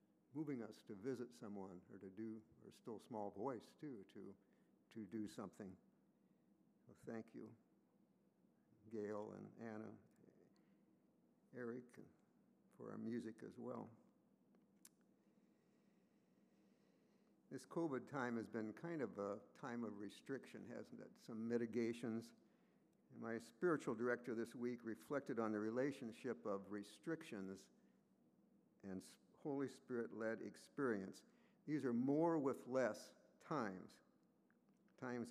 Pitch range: 110-135 Hz